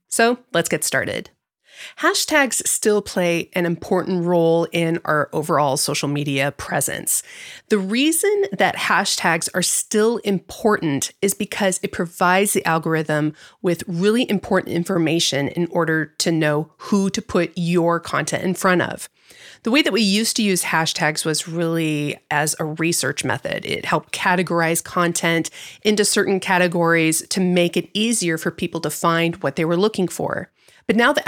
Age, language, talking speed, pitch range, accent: 30-49, English, 155 wpm, 165-200 Hz, American